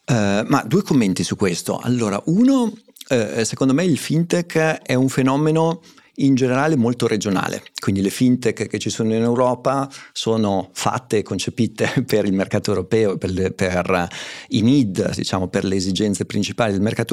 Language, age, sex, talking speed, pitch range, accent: Italian, 40-59, male, 170 wpm, 100-125 Hz, native